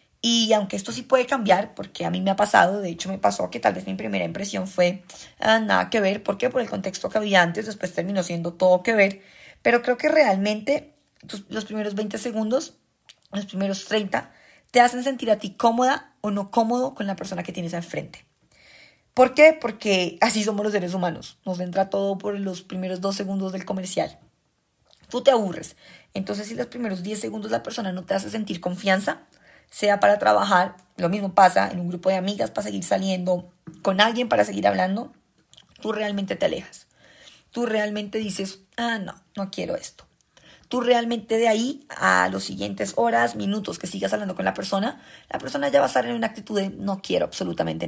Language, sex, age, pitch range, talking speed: Spanish, female, 20-39, 185-220 Hz, 200 wpm